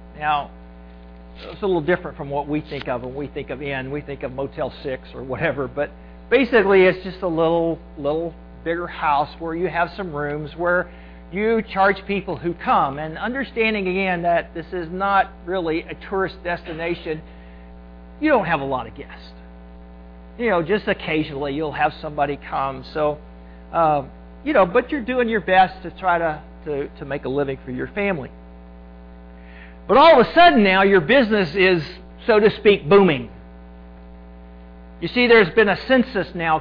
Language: English